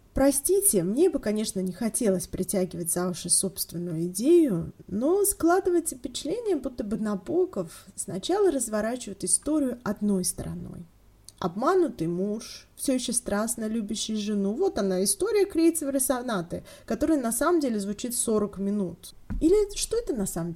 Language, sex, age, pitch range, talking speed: Russian, female, 20-39, 180-265 Hz, 135 wpm